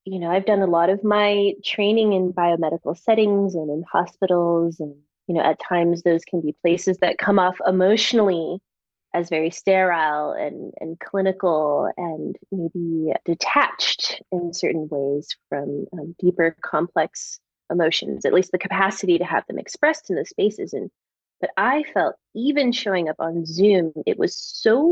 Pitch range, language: 170-195 Hz, English